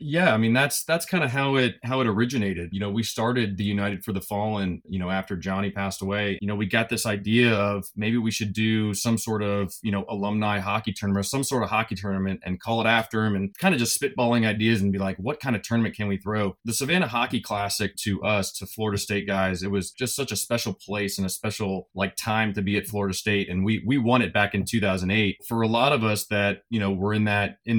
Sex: male